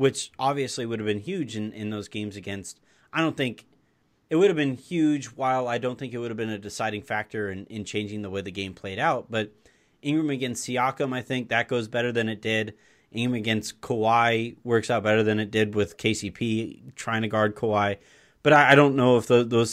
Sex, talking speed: male, 220 wpm